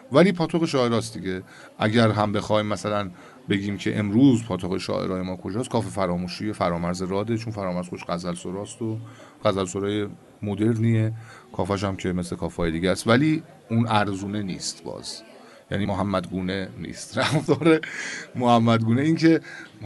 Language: Persian